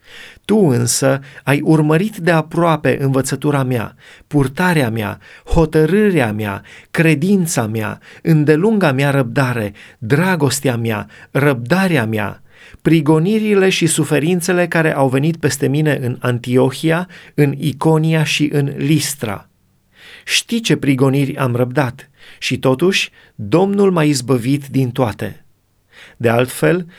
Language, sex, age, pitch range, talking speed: Romanian, male, 30-49, 125-160 Hz, 110 wpm